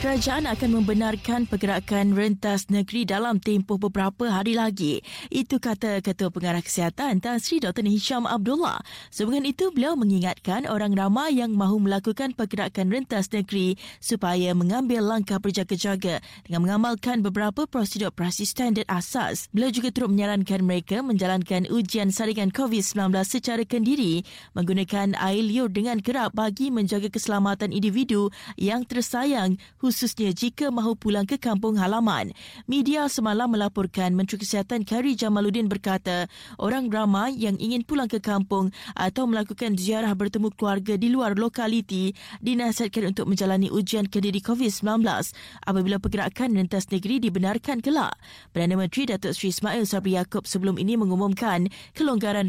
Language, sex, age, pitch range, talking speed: Malay, female, 20-39, 190-235 Hz, 135 wpm